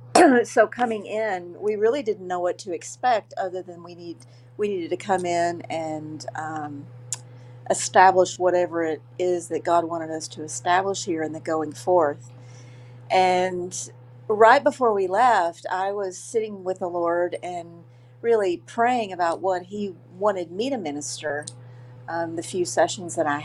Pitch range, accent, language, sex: 155-205 Hz, American, English, female